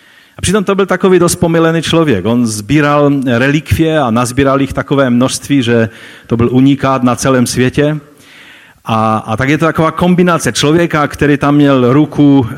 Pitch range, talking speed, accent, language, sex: 100-130 Hz, 160 wpm, native, Czech, male